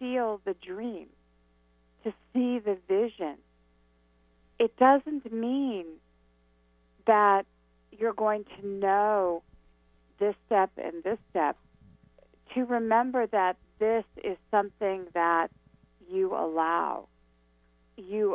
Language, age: English, 50-69